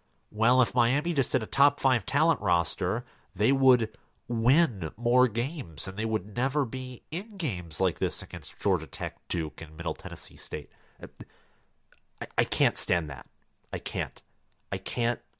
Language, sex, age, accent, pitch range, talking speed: English, male, 30-49, American, 85-120 Hz, 160 wpm